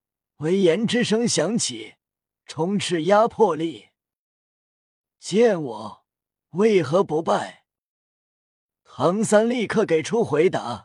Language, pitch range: Chinese, 155-215 Hz